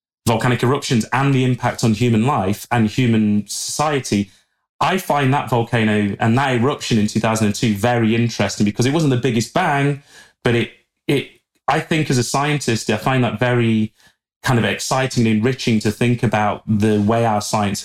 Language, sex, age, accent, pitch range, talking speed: English, male, 30-49, British, 110-135 Hz, 175 wpm